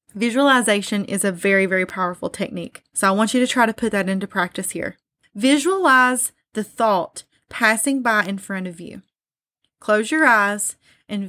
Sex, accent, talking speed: female, American, 170 wpm